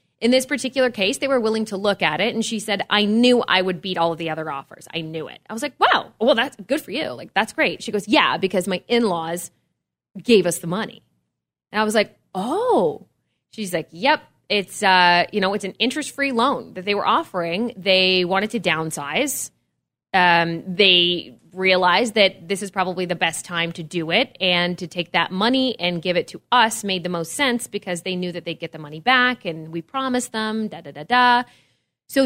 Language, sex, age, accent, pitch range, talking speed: English, female, 20-39, American, 175-225 Hz, 215 wpm